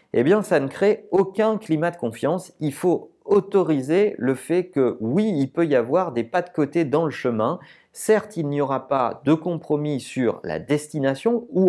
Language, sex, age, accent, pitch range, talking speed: French, male, 40-59, French, 135-190 Hz, 195 wpm